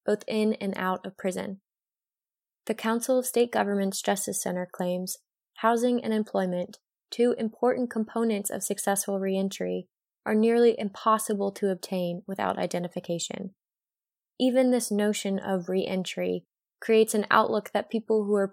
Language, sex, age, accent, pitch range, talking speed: English, female, 20-39, American, 185-220 Hz, 135 wpm